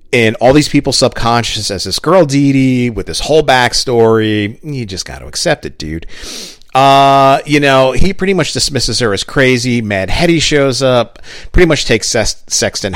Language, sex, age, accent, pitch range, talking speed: English, male, 40-59, American, 95-135 Hz, 180 wpm